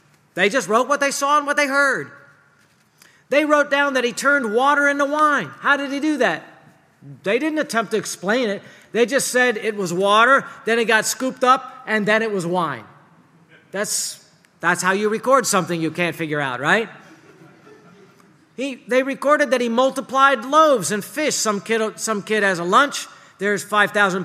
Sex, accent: male, American